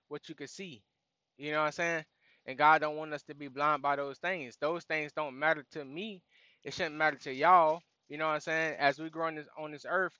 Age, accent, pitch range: 20-39, American, 145-165 Hz